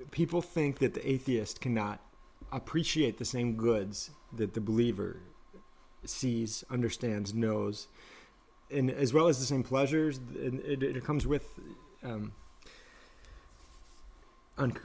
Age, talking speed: 20-39, 115 wpm